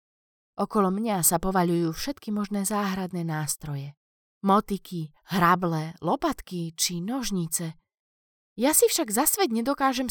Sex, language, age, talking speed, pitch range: female, Slovak, 20-39, 105 wpm, 165-235 Hz